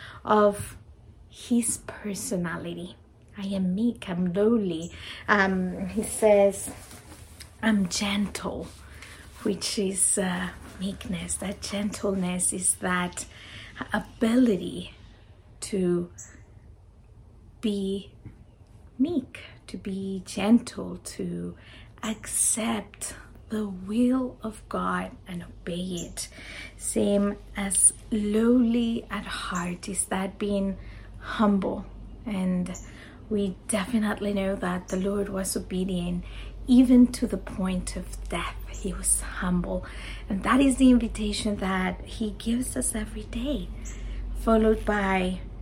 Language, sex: Spanish, female